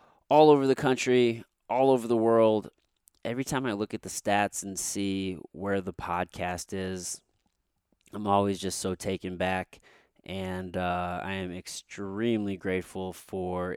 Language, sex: English, male